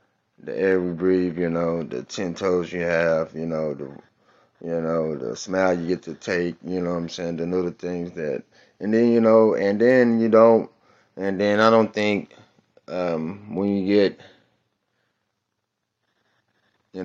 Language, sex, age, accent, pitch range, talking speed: English, male, 20-39, American, 85-100 Hz, 175 wpm